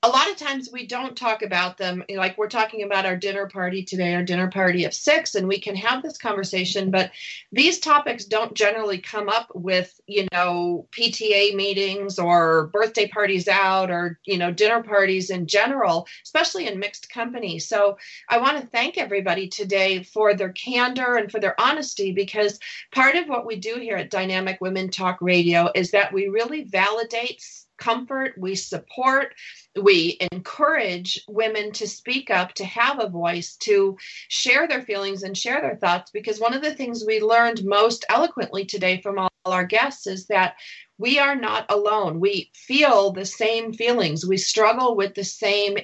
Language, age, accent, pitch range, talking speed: English, 40-59, American, 185-235 Hz, 180 wpm